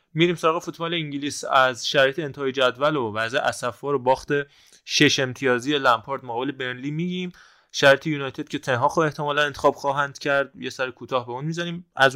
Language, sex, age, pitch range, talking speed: Persian, male, 20-39, 120-145 Hz, 175 wpm